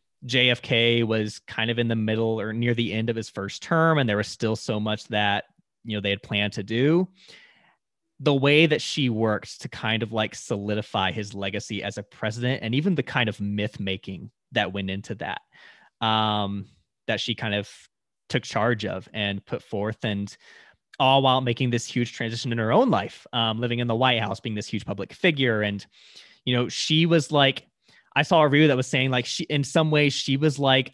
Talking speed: 210 wpm